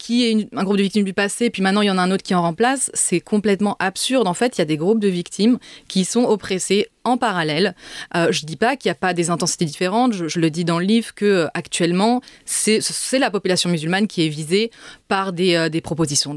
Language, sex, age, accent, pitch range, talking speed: French, female, 20-39, French, 175-220 Hz, 255 wpm